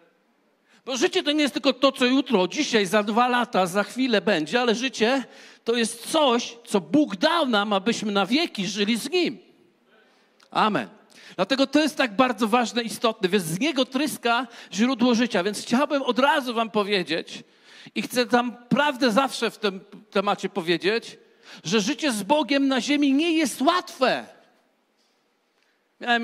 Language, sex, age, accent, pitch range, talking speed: Polish, male, 50-69, native, 215-270 Hz, 160 wpm